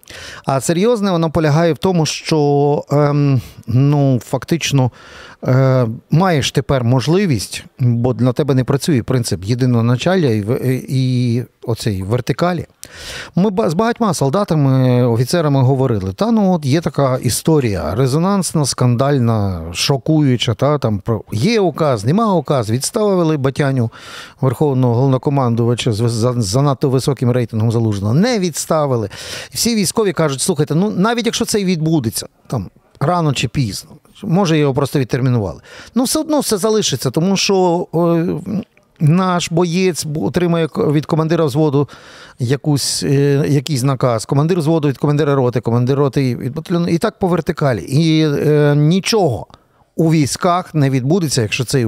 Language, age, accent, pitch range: Ukrainian, 50-69, native, 125-170 Hz